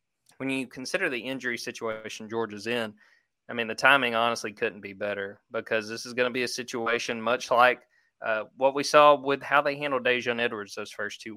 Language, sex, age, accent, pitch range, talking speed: English, male, 20-39, American, 115-130 Hz, 205 wpm